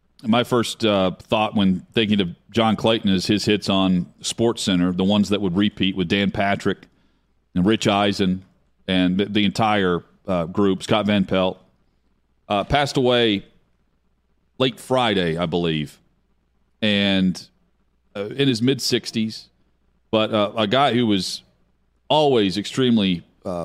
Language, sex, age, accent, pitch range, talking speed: English, male, 40-59, American, 95-115 Hz, 135 wpm